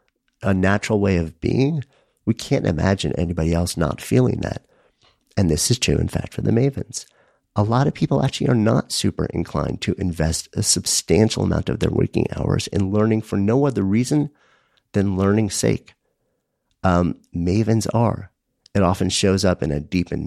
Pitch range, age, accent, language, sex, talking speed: 85-105 Hz, 50-69, American, English, male, 180 wpm